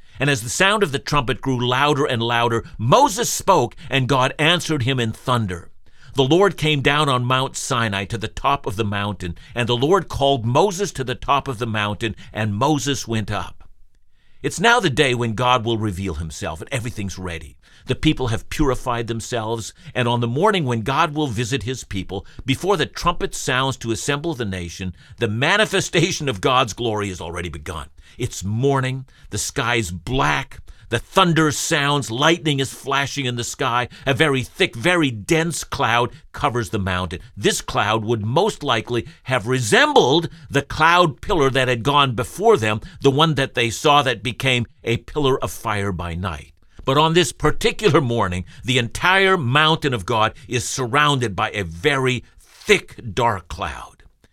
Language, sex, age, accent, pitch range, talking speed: English, male, 50-69, American, 110-145 Hz, 175 wpm